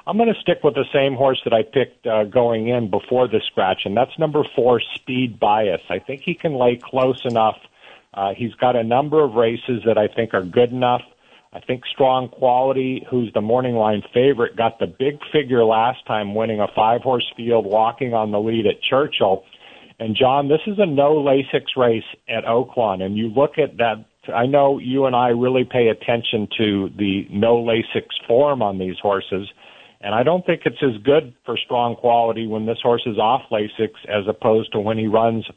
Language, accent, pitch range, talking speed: English, American, 110-130 Hz, 205 wpm